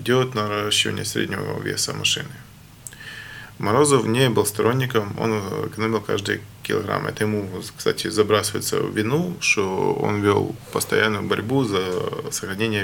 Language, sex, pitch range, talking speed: Ukrainian, male, 105-140 Hz, 120 wpm